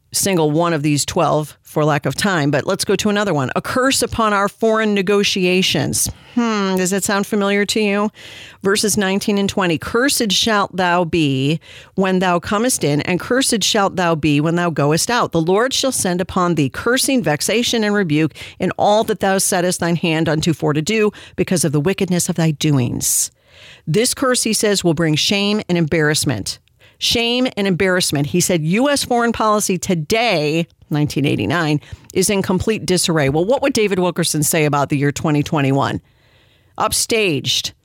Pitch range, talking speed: 155-210 Hz, 175 wpm